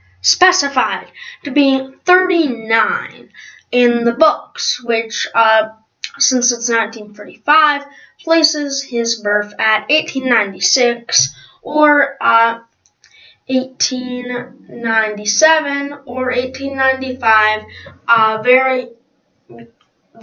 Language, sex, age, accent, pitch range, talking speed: English, female, 10-29, American, 230-290 Hz, 95 wpm